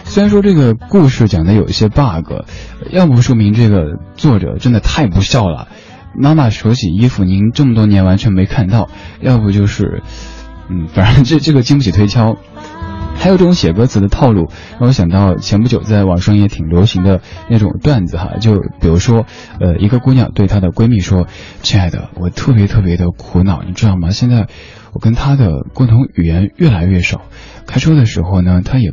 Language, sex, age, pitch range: Chinese, male, 20-39, 90-115 Hz